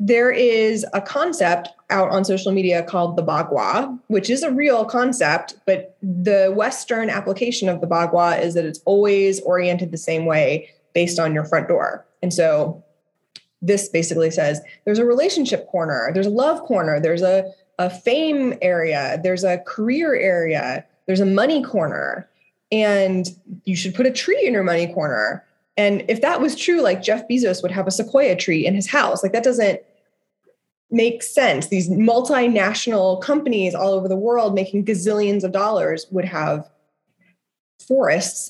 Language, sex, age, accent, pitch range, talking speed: English, female, 20-39, American, 175-230 Hz, 165 wpm